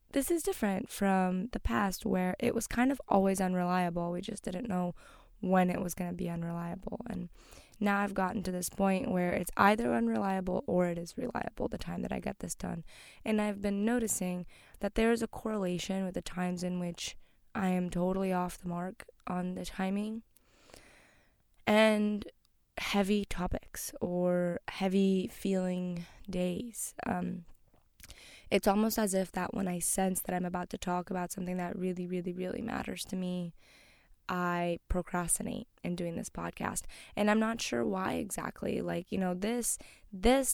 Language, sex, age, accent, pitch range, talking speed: English, female, 20-39, American, 180-205 Hz, 170 wpm